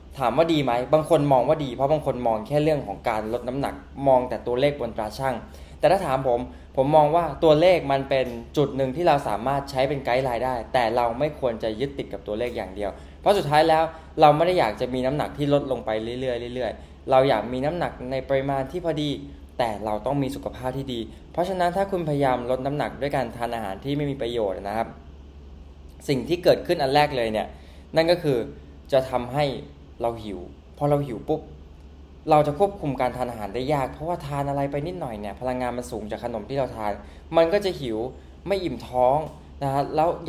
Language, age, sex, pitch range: Thai, 20-39, male, 110-150 Hz